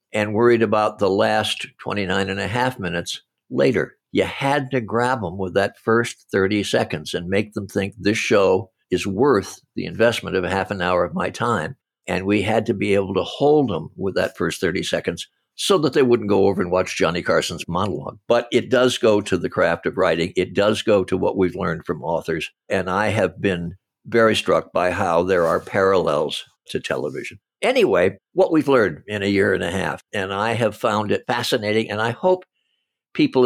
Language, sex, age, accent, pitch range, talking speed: English, male, 60-79, American, 95-120 Hz, 205 wpm